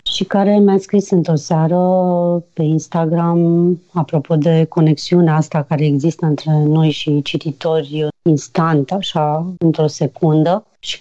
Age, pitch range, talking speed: 30-49, 155-185 Hz, 125 wpm